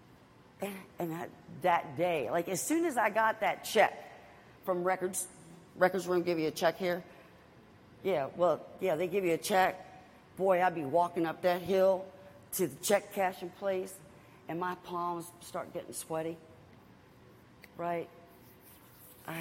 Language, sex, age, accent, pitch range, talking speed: English, female, 50-69, American, 150-190 Hz, 150 wpm